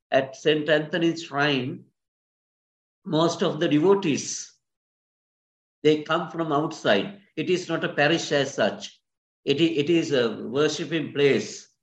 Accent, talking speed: Indian, 125 wpm